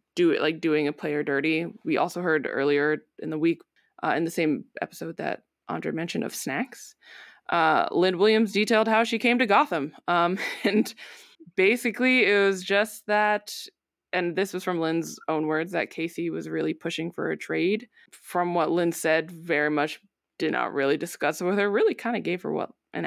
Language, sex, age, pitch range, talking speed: English, female, 20-39, 160-200 Hz, 190 wpm